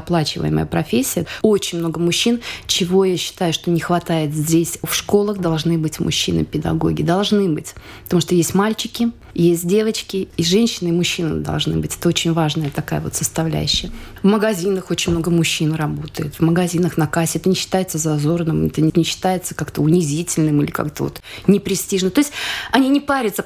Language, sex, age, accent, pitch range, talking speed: Russian, female, 20-39, native, 160-205 Hz, 165 wpm